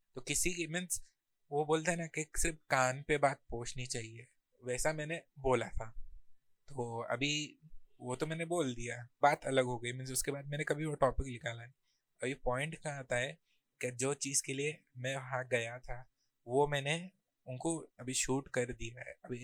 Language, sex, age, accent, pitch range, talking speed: Hindi, male, 20-39, native, 125-145 Hz, 190 wpm